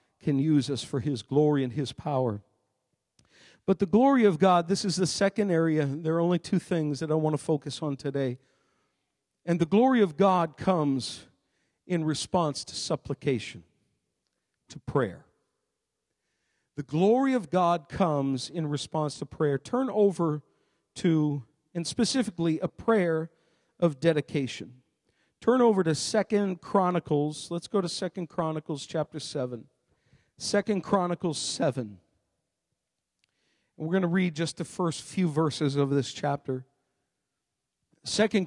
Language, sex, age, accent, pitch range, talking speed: English, male, 50-69, American, 145-190 Hz, 140 wpm